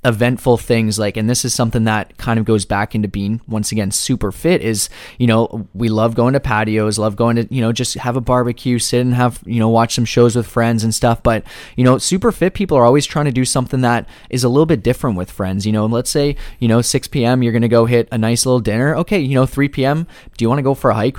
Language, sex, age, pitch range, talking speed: English, male, 20-39, 110-130 Hz, 270 wpm